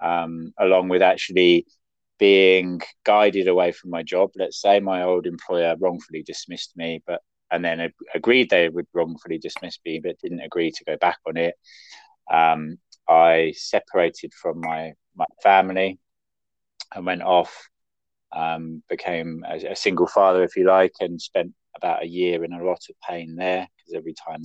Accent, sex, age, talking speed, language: British, male, 20-39, 165 wpm, English